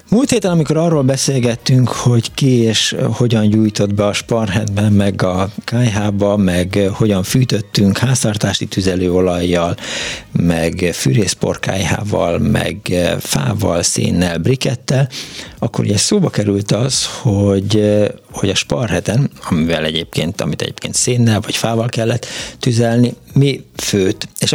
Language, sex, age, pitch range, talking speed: Hungarian, male, 60-79, 100-125 Hz, 110 wpm